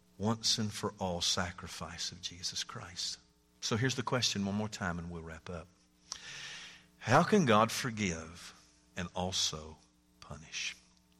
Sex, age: male, 50-69